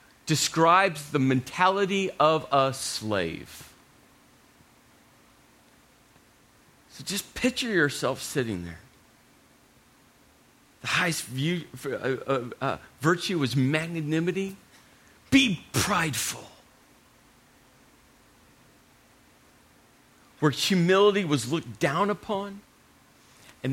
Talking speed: 80 wpm